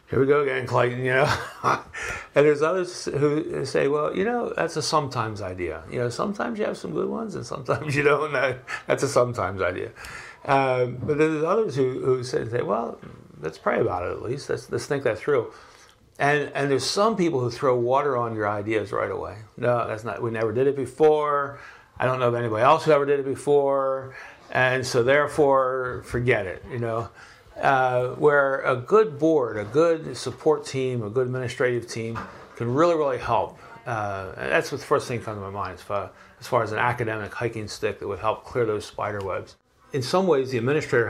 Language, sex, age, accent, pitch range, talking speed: English, male, 60-79, American, 115-140 Hz, 205 wpm